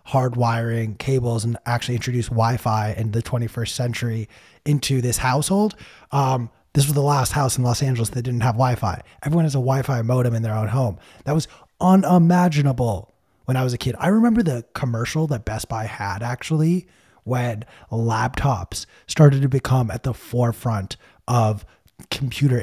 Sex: male